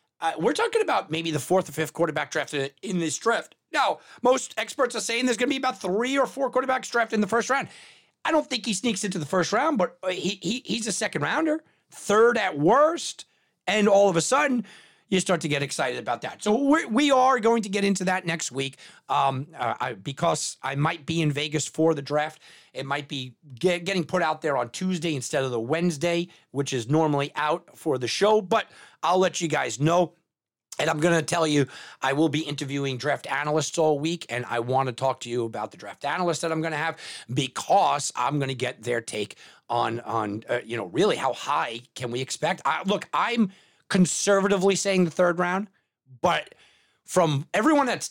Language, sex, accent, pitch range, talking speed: English, male, American, 145-215 Hz, 215 wpm